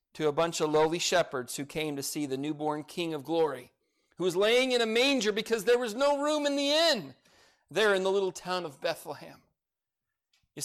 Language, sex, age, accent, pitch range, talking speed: English, male, 40-59, American, 155-215 Hz, 210 wpm